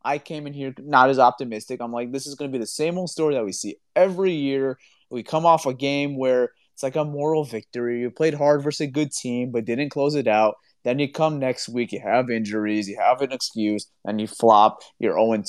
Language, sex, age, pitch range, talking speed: English, male, 30-49, 130-170 Hz, 245 wpm